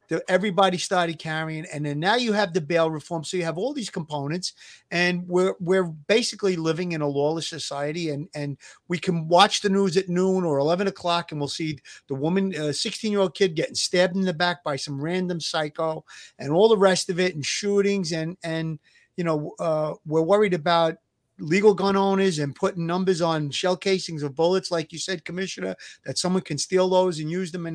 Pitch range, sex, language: 160-205 Hz, male, English